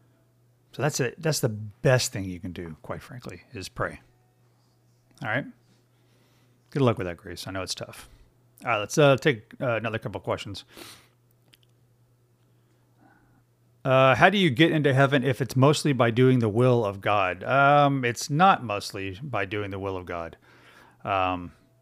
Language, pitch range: English, 105-130 Hz